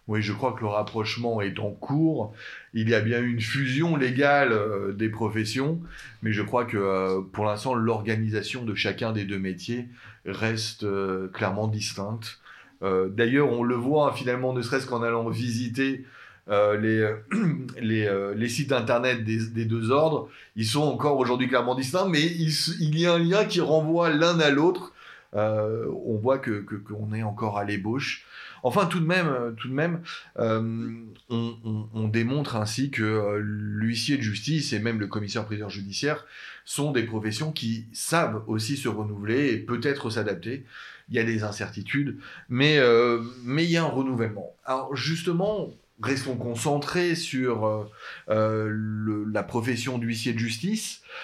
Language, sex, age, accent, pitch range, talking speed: French, male, 30-49, French, 110-140 Hz, 175 wpm